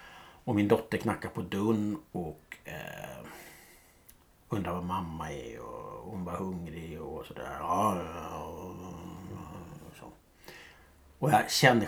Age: 60-79